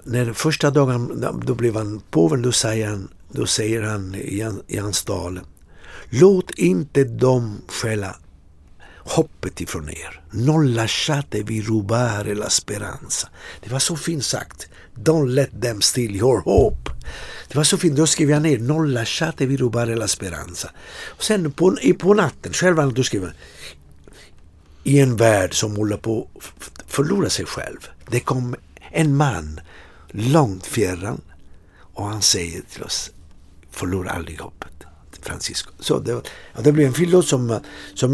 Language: English